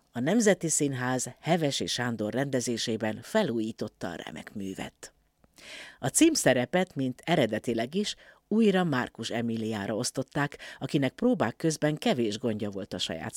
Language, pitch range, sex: Hungarian, 115-165 Hz, female